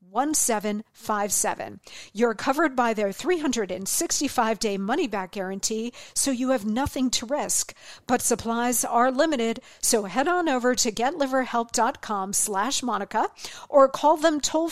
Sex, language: female, English